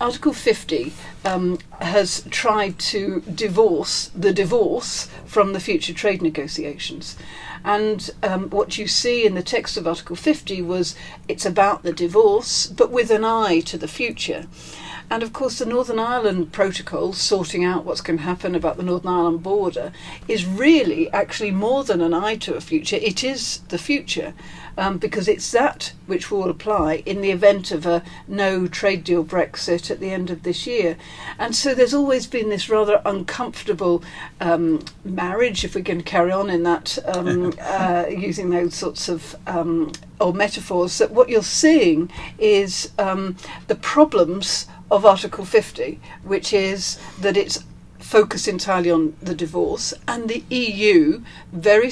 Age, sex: 50-69, female